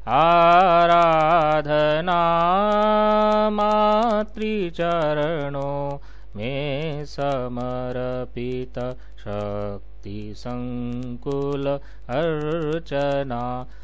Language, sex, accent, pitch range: Hindi, male, native, 125-170 Hz